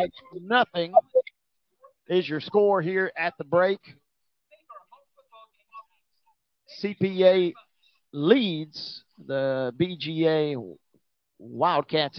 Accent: American